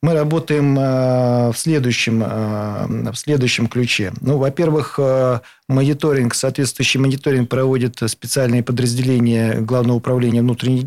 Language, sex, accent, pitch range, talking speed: Russian, male, native, 120-145 Hz, 95 wpm